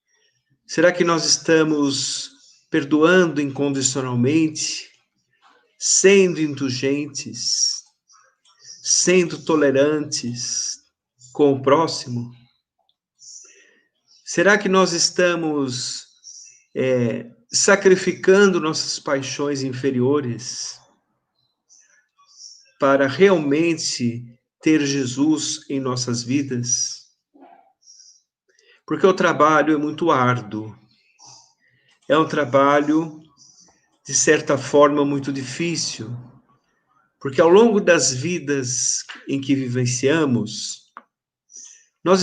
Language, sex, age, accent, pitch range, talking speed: Portuguese, male, 50-69, Brazilian, 135-170 Hz, 70 wpm